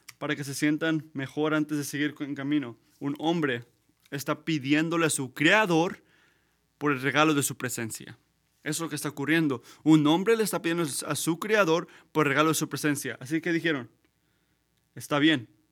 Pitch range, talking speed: 140-165 Hz, 185 wpm